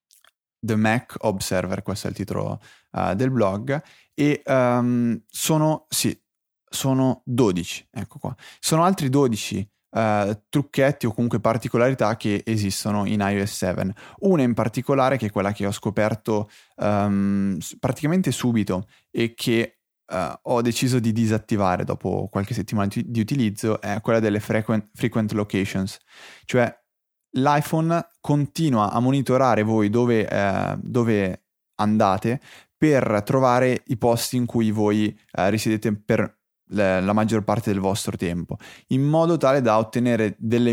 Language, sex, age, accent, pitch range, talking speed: Italian, male, 20-39, native, 100-125 Hz, 135 wpm